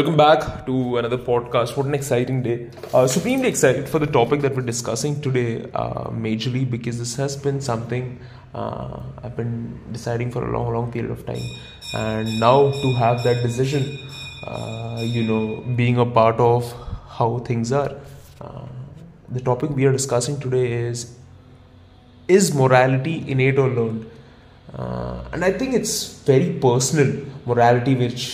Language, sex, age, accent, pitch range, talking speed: English, male, 20-39, Indian, 115-140 Hz, 155 wpm